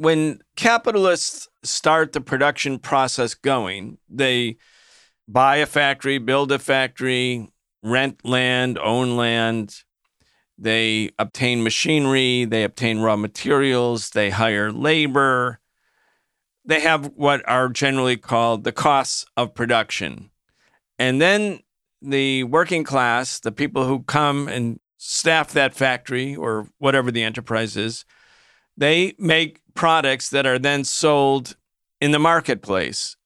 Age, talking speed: 50-69, 120 wpm